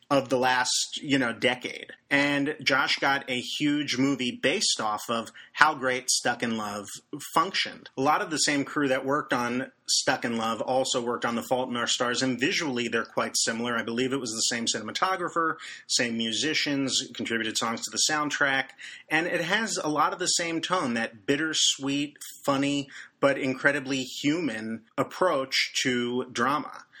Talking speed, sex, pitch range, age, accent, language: 175 wpm, male, 125-160 Hz, 30-49, American, English